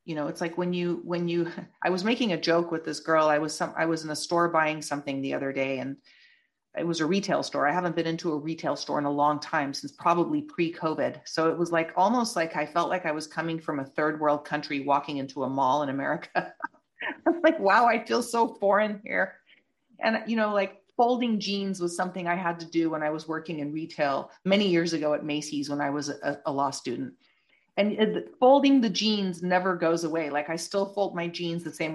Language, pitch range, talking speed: English, 155-195 Hz, 240 wpm